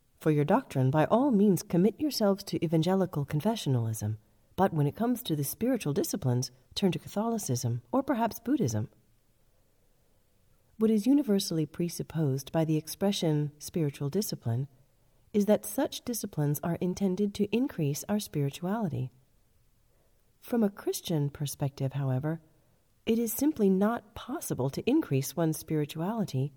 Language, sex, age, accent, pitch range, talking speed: English, female, 40-59, American, 130-200 Hz, 130 wpm